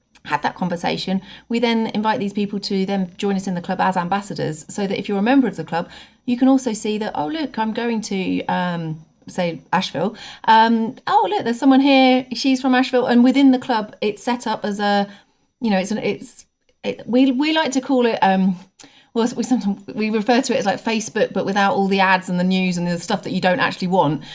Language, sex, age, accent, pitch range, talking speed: English, female, 30-49, British, 185-250 Hz, 235 wpm